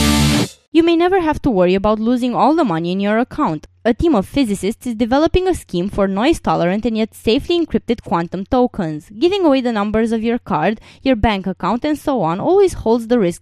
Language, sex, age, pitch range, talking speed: English, female, 20-39, 195-285 Hz, 215 wpm